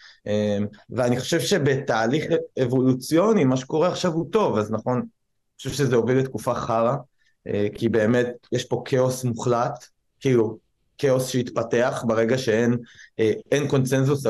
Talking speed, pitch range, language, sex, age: 120 wpm, 115-145 Hz, Hebrew, male, 20-39